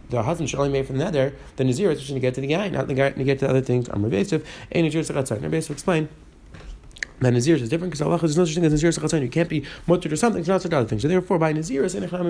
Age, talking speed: 30-49, 330 wpm